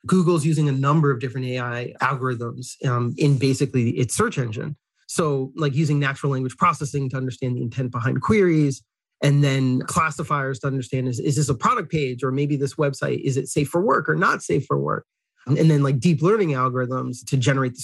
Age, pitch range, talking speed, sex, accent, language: 30-49, 130-155 Hz, 205 wpm, male, American, English